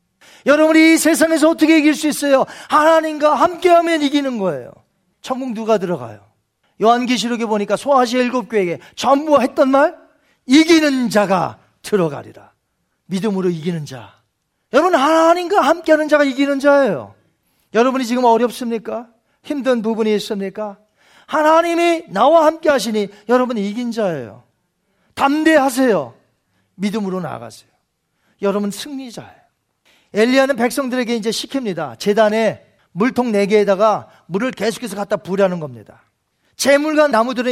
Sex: male